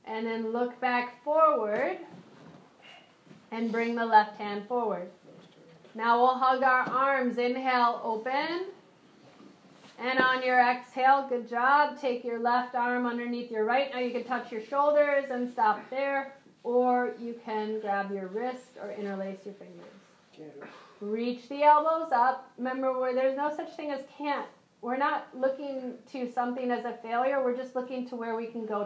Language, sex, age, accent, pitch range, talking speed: English, female, 40-59, American, 220-260 Hz, 160 wpm